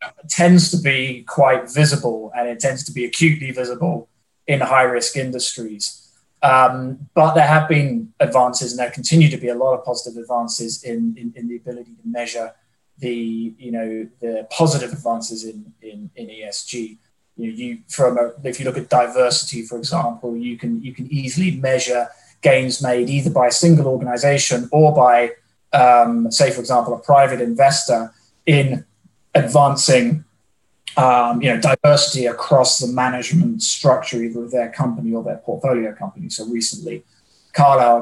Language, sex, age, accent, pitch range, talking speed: English, male, 20-39, British, 120-145 Hz, 165 wpm